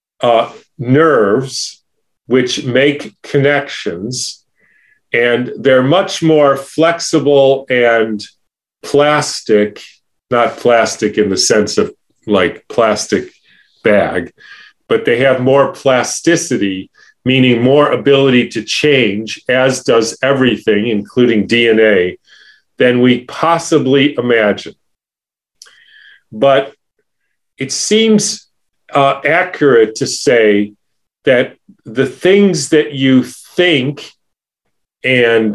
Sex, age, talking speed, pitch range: male, 40-59, 90 wpm, 120-150 Hz